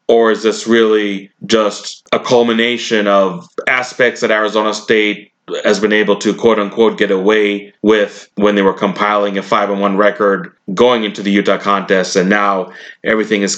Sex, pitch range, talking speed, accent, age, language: male, 95-105 Hz, 170 wpm, American, 30-49, English